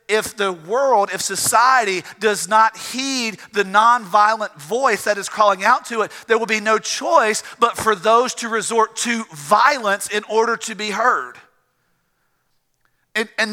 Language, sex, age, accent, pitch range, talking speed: English, male, 40-59, American, 200-255 Hz, 160 wpm